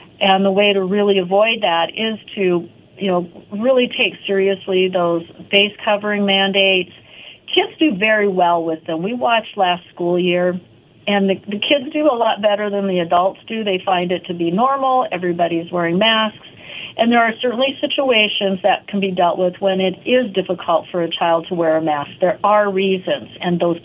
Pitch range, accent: 175-215 Hz, American